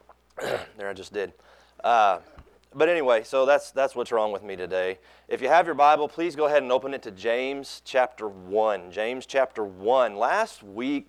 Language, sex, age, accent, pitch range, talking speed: English, male, 30-49, American, 115-165 Hz, 190 wpm